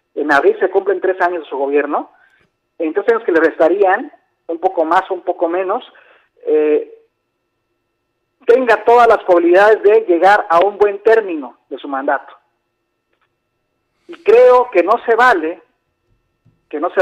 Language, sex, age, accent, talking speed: Spanish, male, 50-69, Mexican, 155 wpm